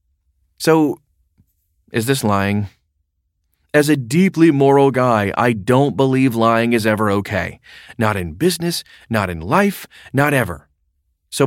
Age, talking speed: 30-49, 130 wpm